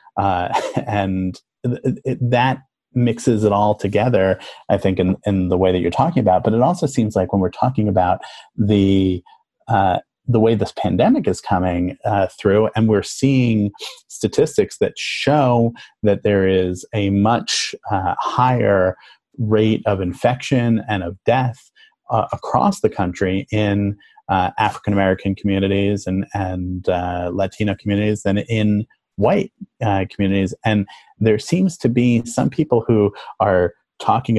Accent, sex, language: American, male, English